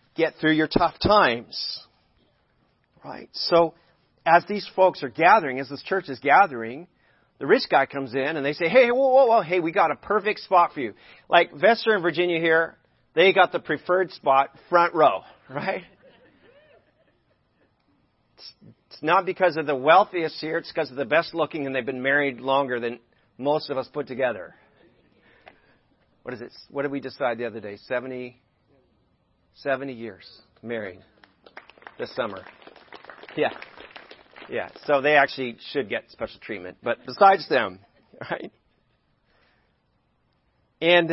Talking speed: 150 wpm